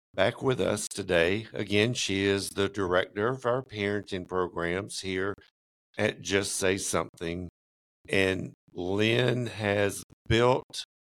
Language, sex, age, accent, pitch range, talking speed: English, male, 60-79, American, 85-105 Hz, 120 wpm